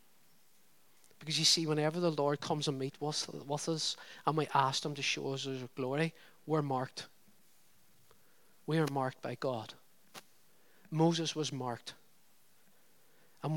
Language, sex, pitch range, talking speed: English, male, 135-155 Hz, 135 wpm